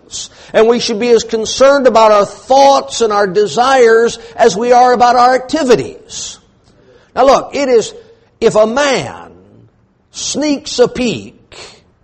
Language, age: English, 60-79